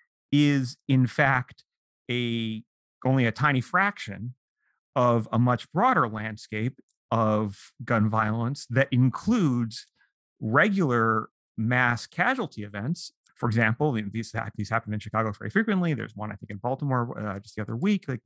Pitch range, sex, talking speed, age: 110-135 Hz, male, 145 wpm, 30-49